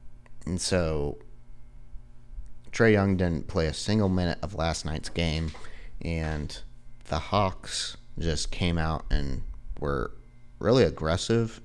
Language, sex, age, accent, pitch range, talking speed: English, male, 40-59, American, 80-120 Hz, 120 wpm